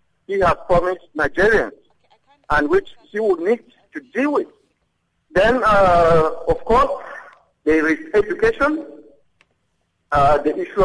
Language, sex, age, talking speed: English, male, 50-69, 120 wpm